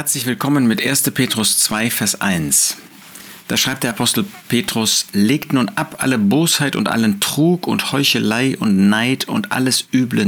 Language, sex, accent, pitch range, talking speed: German, male, German, 100-130 Hz, 165 wpm